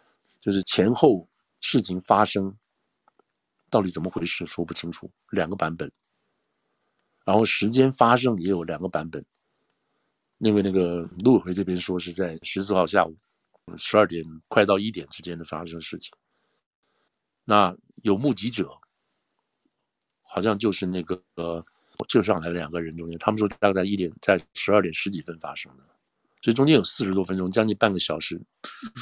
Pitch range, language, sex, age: 85-100 Hz, Chinese, male, 50-69